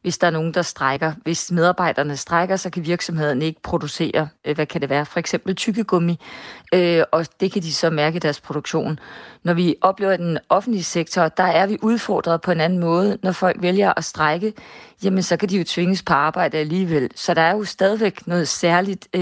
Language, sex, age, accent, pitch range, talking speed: Danish, female, 30-49, native, 160-185 Hz, 205 wpm